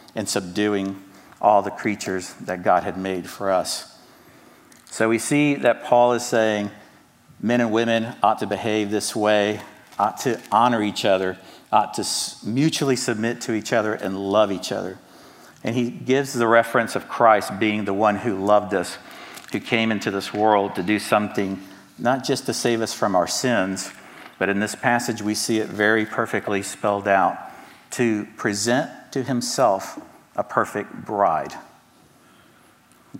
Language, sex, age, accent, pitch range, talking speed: English, male, 50-69, American, 105-125 Hz, 165 wpm